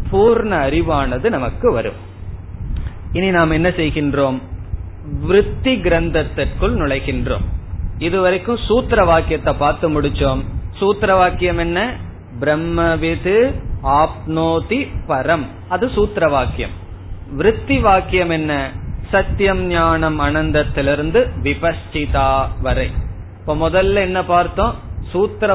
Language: Tamil